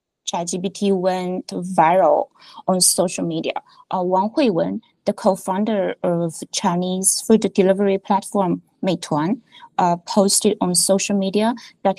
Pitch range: 190-230 Hz